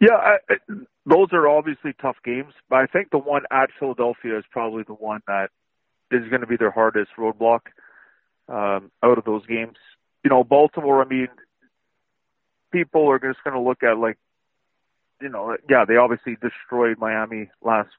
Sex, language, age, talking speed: male, English, 40-59, 175 wpm